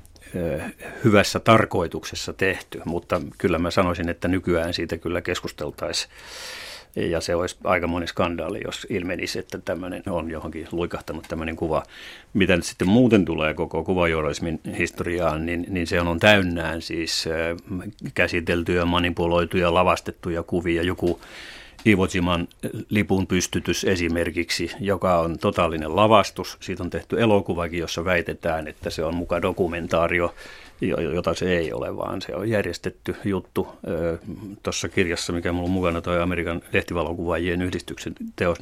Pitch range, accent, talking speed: 85-100 Hz, native, 130 wpm